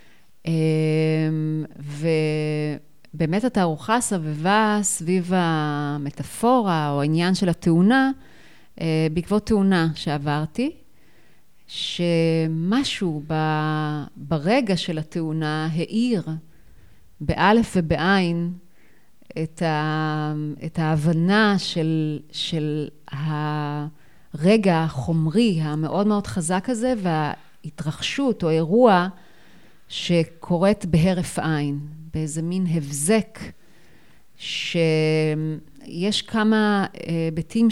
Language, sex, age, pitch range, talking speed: Hebrew, female, 30-49, 155-195 Hz, 65 wpm